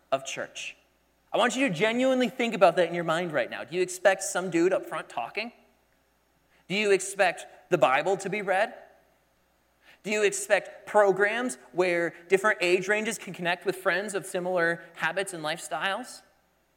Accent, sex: American, male